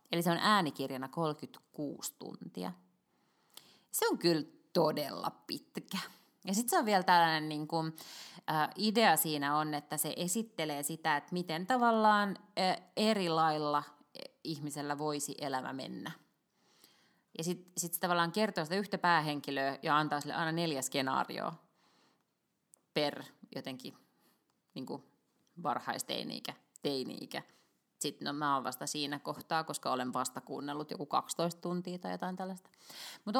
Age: 20-39